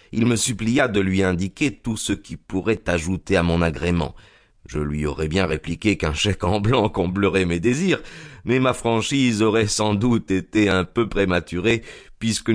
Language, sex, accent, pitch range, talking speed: French, male, French, 85-110 Hz, 175 wpm